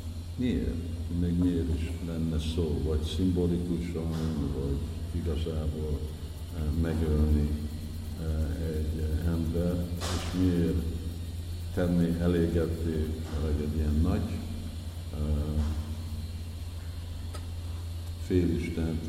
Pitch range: 80-85 Hz